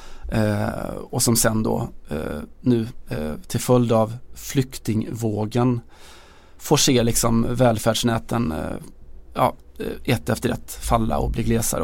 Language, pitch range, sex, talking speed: Swedish, 110-125 Hz, male, 105 wpm